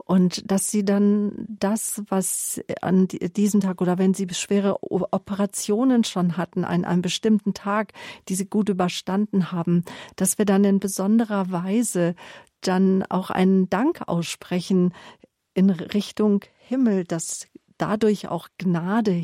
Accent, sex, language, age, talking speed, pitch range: German, female, German, 50-69, 135 wpm, 175-200 Hz